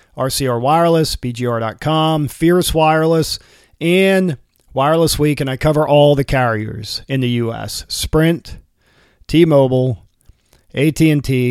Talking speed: 105 wpm